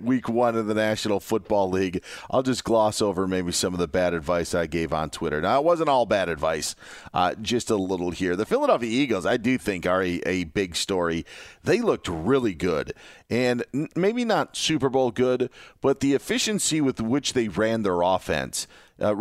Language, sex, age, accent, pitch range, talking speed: English, male, 40-59, American, 100-130 Hz, 195 wpm